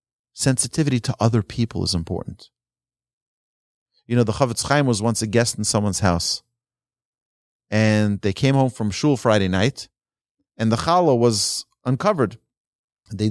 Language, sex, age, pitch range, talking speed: English, male, 40-59, 95-125 Hz, 145 wpm